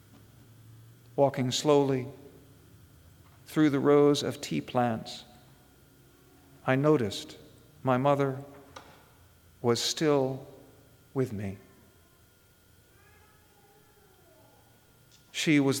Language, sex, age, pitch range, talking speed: English, male, 50-69, 110-155 Hz, 70 wpm